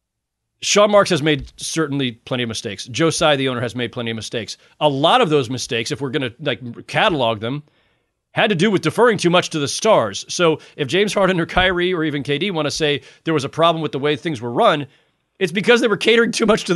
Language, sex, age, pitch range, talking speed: English, male, 40-59, 145-180 Hz, 245 wpm